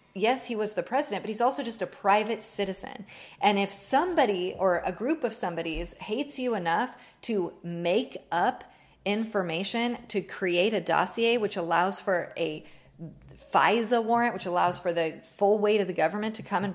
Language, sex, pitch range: English, female, 180-230 Hz